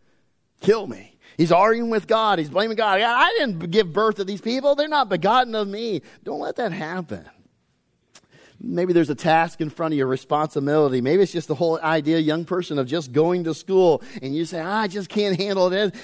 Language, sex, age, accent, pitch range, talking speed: English, male, 40-59, American, 140-205 Hz, 210 wpm